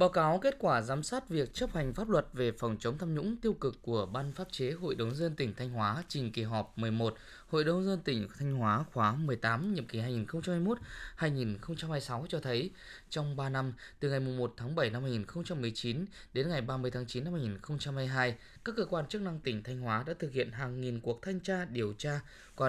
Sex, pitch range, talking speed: male, 115-165 Hz, 215 wpm